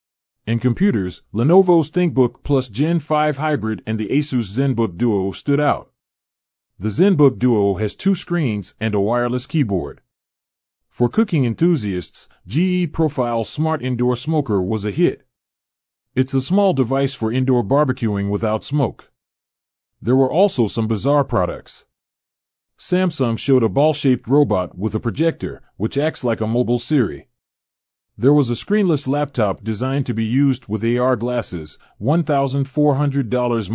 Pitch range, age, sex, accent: 105-145 Hz, 40-59, male, American